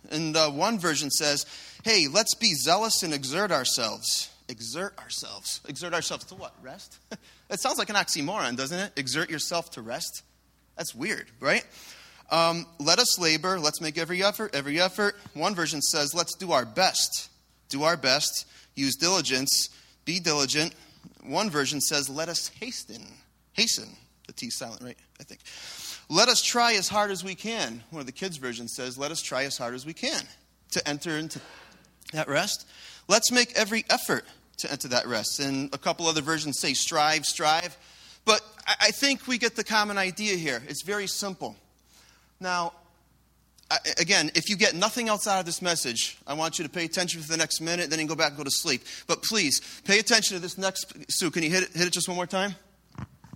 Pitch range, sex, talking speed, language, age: 145-195 Hz, male, 195 wpm, English, 30-49